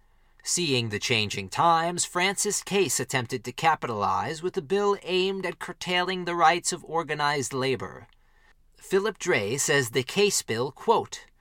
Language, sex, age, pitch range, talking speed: English, male, 40-59, 130-195 Hz, 140 wpm